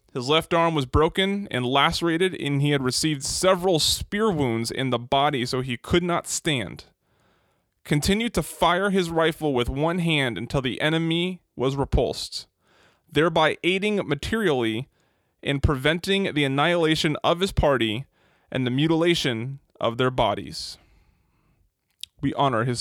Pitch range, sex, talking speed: 130-160 Hz, male, 140 wpm